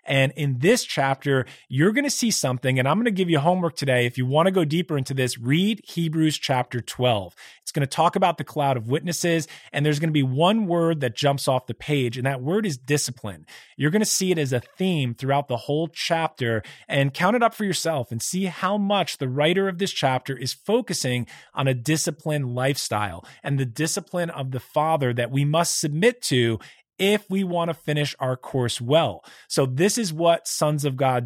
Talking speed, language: 220 wpm, English